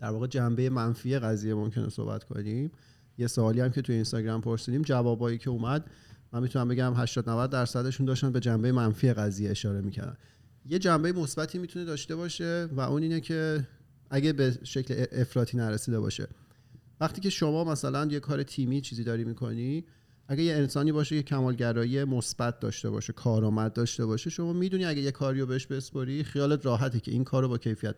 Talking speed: 180 wpm